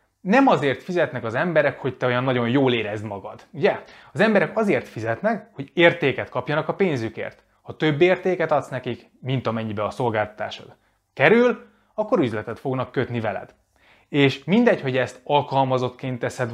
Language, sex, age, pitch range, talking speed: Hungarian, male, 20-39, 120-160 Hz, 155 wpm